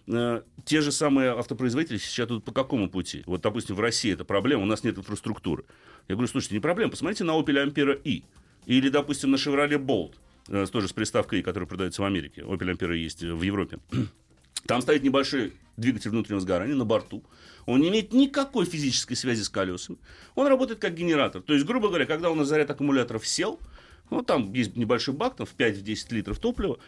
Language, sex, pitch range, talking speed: Russian, male, 110-160 Hz, 195 wpm